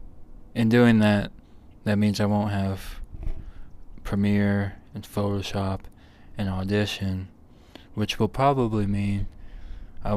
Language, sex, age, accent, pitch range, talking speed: English, male, 20-39, American, 85-105 Hz, 105 wpm